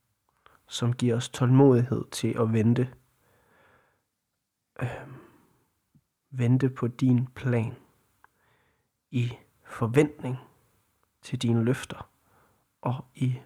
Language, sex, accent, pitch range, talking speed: Danish, male, native, 115-130 Hz, 85 wpm